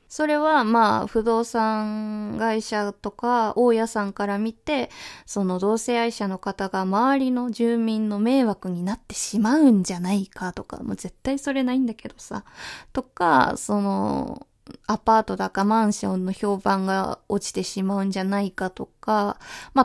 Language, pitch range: Japanese, 195-250 Hz